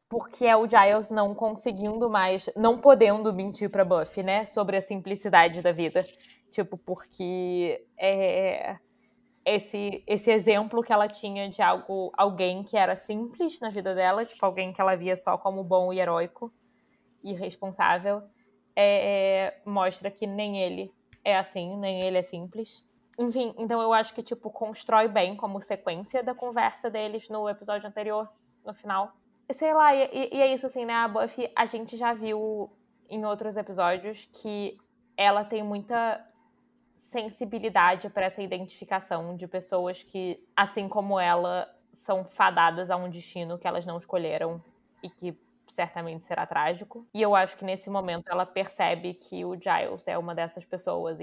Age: 20-39